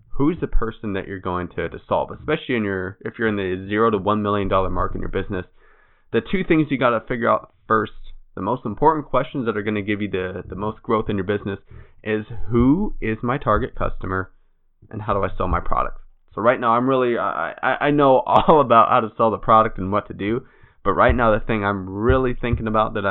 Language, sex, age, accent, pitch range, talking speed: English, male, 20-39, American, 95-120 Hz, 240 wpm